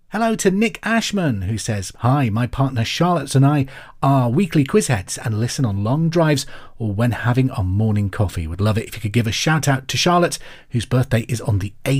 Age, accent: 30-49, British